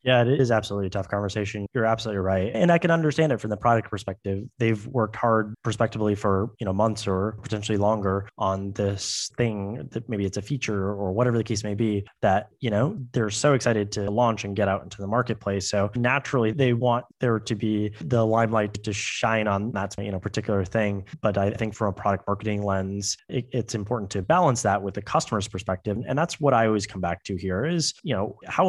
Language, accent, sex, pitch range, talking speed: English, American, male, 100-120 Hz, 220 wpm